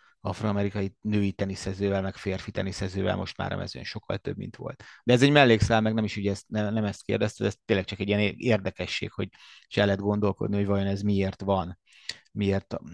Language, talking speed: Hungarian, 200 wpm